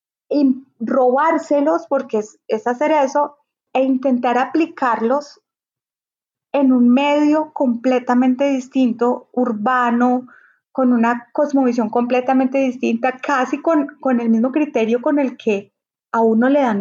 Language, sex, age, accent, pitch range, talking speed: Spanish, female, 30-49, Colombian, 240-290 Hz, 120 wpm